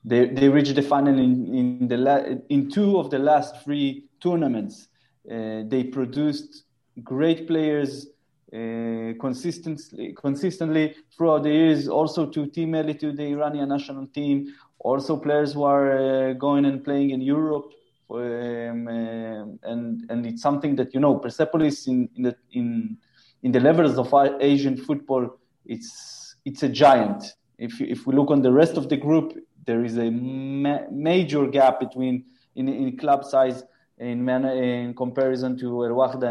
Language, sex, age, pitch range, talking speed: English, male, 20-39, 125-150 Hz, 160 wpm